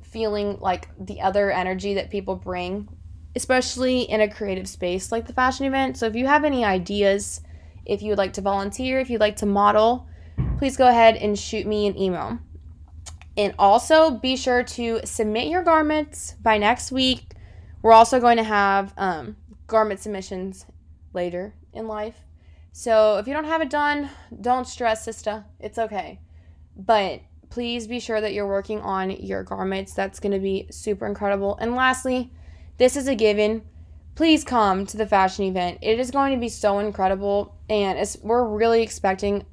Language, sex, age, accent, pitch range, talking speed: English, female, 20-39, American, 185-225 Hz, 175 wpm